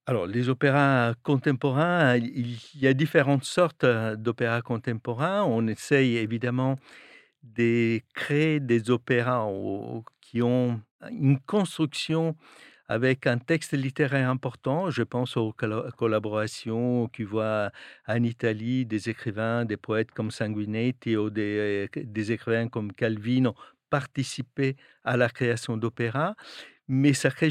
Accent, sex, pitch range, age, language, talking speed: French, male, 115-135 Hz, 50-69, French, 120 wpm